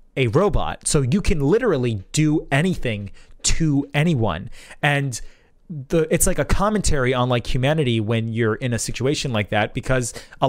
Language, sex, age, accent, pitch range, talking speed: English, male, 30-49, American, 120-160 Hz, 160 wpm